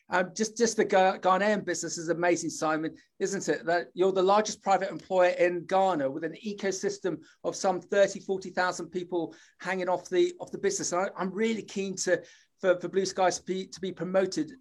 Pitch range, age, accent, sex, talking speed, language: 175-205 Hz, 40-59, British, male, 195 wpm, English